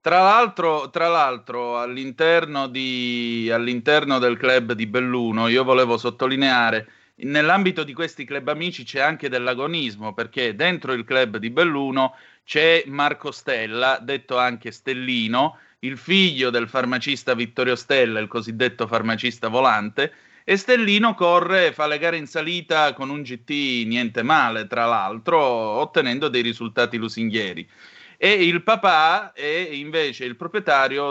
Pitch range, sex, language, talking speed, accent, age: 120-160 Hz, male, Italian, 135 wpm, native, 30-49